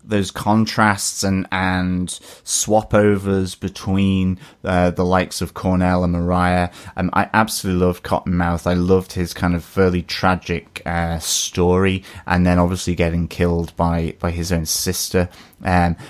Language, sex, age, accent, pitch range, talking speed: English, male, 20-39, British, 90-100 Hz, 145 wpm